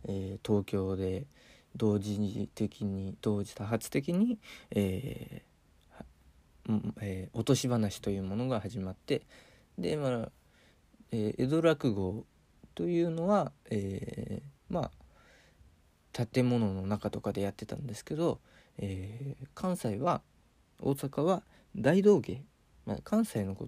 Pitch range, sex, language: 95-120 Hz, male, Japanese